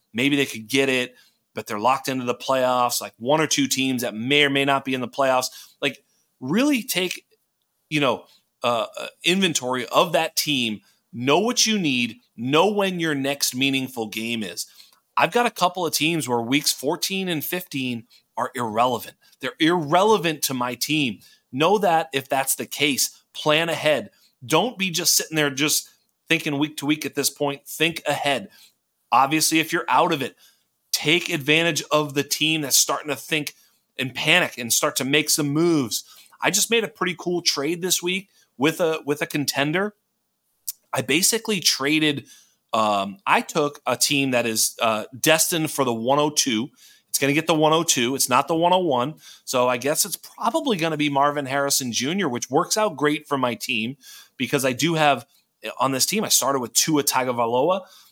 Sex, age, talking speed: male, 30-49, 185 wpm